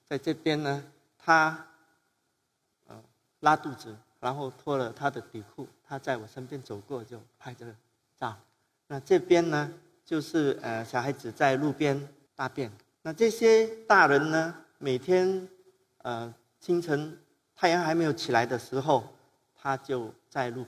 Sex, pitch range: male, 120-155 Hz